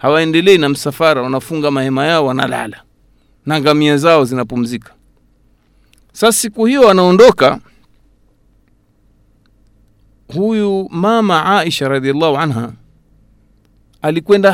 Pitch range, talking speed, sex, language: 140-210 Hz, 90 wpm, male, Swahili